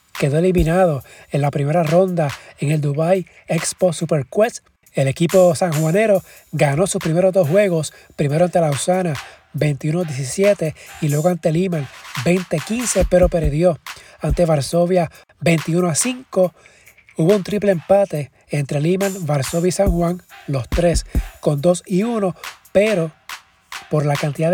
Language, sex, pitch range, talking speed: Spanish, male, 155-180 Hz, 130 wpm